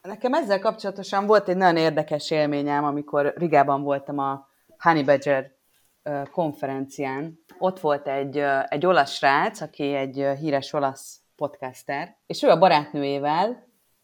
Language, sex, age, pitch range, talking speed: Hungarian, female, 30-49, 135-165 Hz, 130 wpm